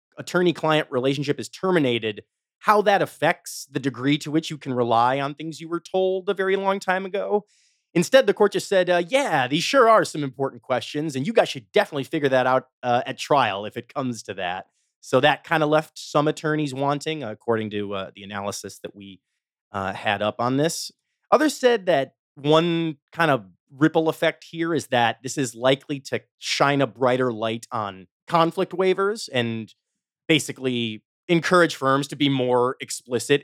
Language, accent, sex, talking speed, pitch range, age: English, American, male, 185 wpm, 120-160 Hz, 30-49